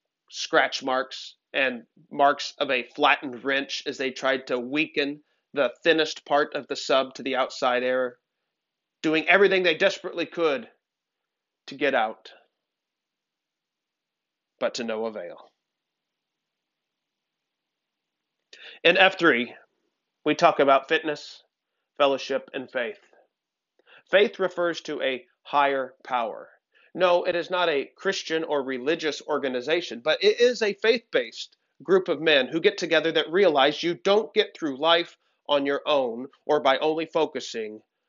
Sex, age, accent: male, 40-59, American